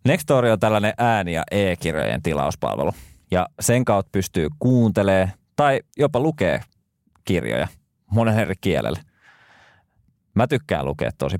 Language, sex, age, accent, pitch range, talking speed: Finnish, male, 20-39, native, 85-115 Hz, 120 wpm